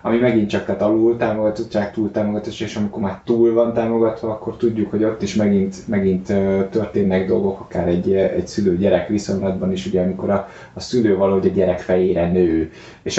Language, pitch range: Hungarian, 95-110 Hz